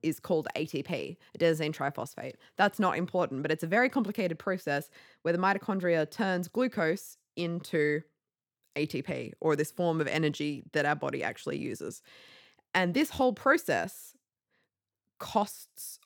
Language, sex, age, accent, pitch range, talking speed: English, female, 20-39, Australian, 150-200 Hz, 135 wpm